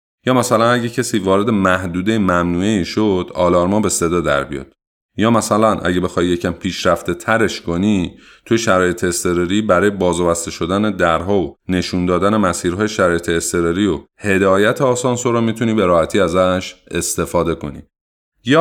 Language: Persian